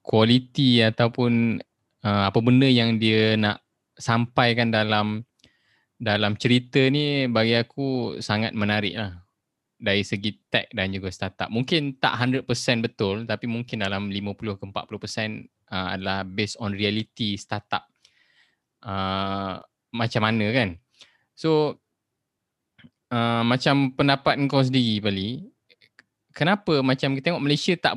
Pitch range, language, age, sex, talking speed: 110-140 Hz, Malay, 20-39, male, 120 wpm